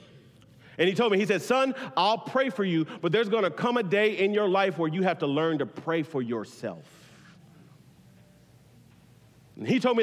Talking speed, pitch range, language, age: 205 wpm, 130-210 Hz, English, 40-59